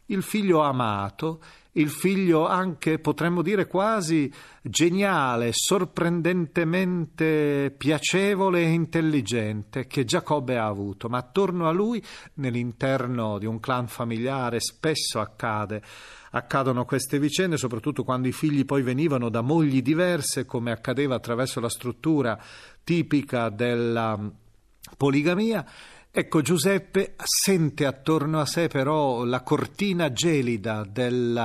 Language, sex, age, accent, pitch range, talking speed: Italian, male, 40-59, native, 120-170 Hz, 110 wpm